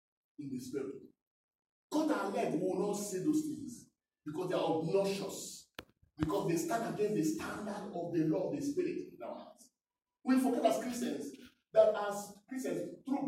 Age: 40-59